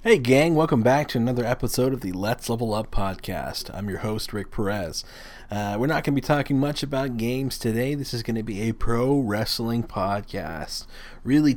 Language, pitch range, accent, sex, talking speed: English, 100-125 Hz, American, male, 200 wpm